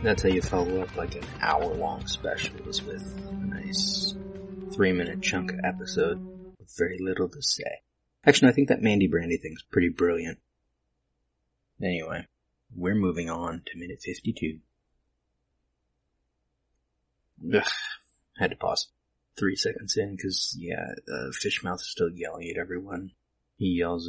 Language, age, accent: English, 30-49, American